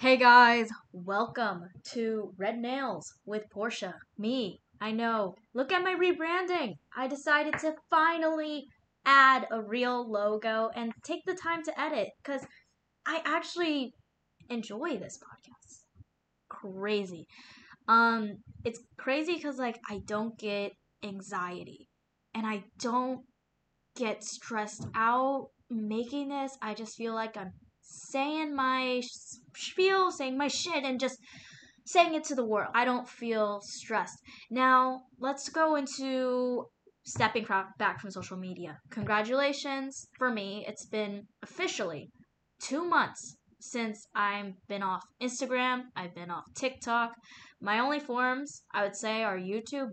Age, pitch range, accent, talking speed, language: 10-29, 215-275 Hz, American, 135 wpm, English